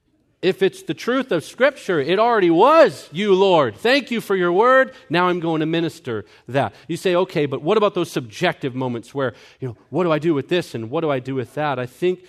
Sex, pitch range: male, 115-170 Hz